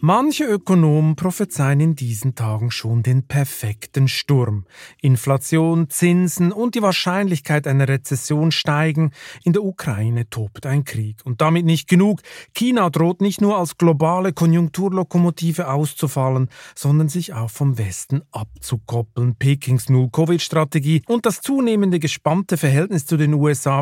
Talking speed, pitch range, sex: 130 wpm, 130-170 Hz, male